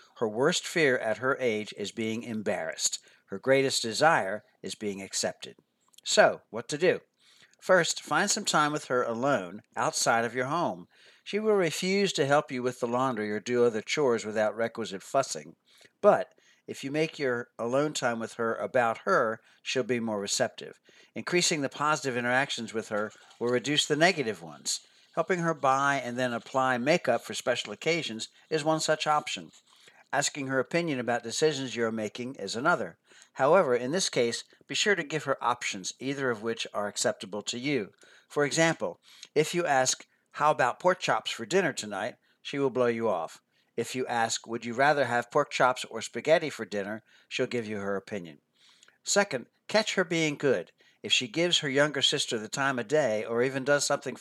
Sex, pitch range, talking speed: male, 115-150 Hz, 185 wpm